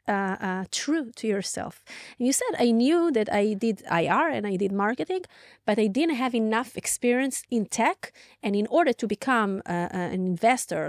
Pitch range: 205-255 Hz